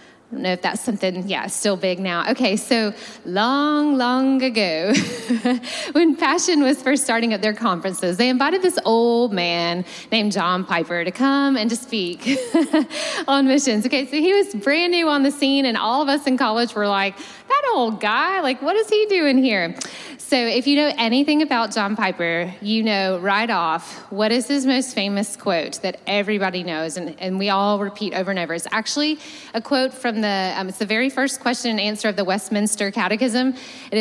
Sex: female